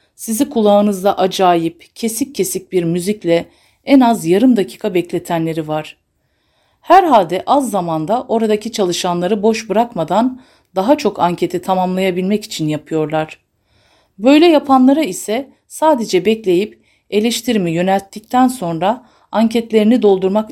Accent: native